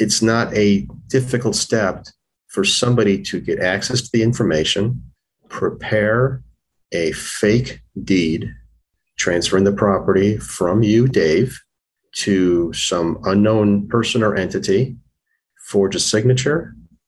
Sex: male